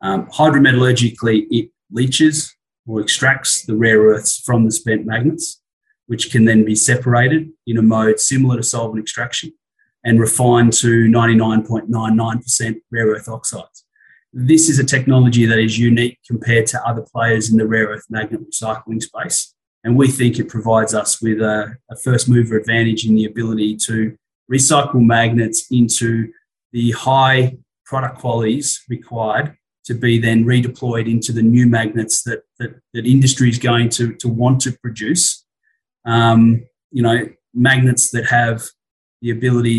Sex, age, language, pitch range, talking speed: male, 30-49, English, 110-125 Hz, 150 wpm